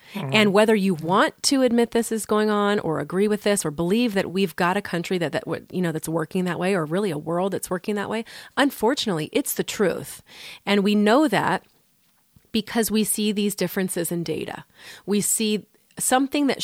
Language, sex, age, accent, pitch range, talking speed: English, female, 30-49, American, 175-215 Hz, 200 wpm